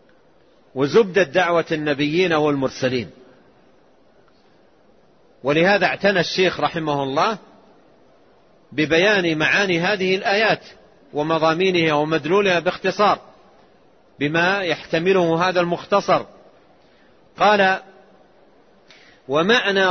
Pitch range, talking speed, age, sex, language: 160-195 Hz, 65 wpm, 40-59, male, Arabic